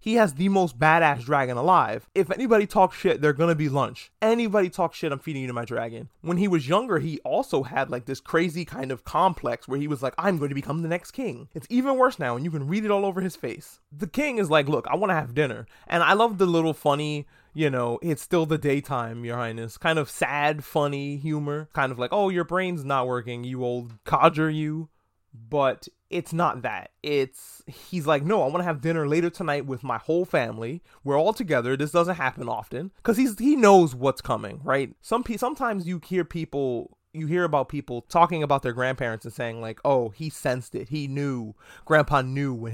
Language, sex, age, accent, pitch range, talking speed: English, male, 20-39, American, 130-170 Hz, 225 wpm